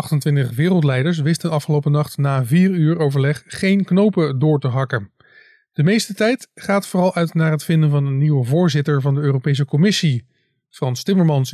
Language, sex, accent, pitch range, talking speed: Dutch, male, Dutch, 140-195 Hz, 170 wpm